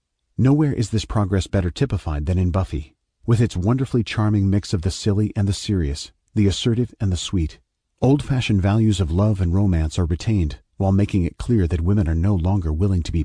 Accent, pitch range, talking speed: American, 85-115 Hz, 205 wpm